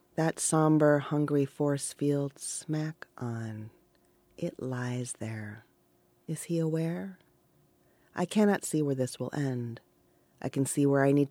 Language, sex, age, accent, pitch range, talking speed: English, female, 30-49, American, 125-165 Hz, 140 wpm